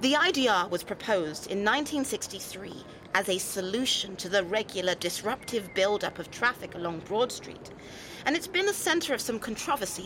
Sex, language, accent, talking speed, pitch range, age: female, English, British, 160 wpm, 180-245 Hz, 30-49